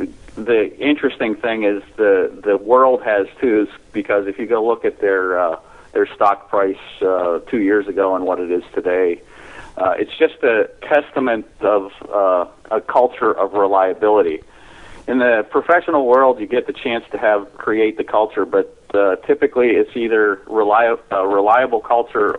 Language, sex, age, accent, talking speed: English, male, 40-59, American, 165 wpm